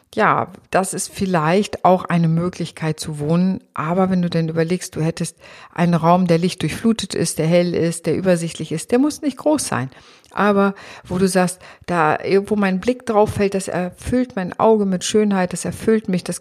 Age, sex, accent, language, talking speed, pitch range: 50-69, female, German, German, 195 wpm, 165-200 Hz